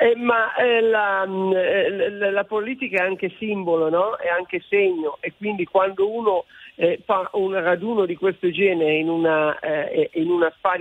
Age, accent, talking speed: 50-69, native, 170 wpm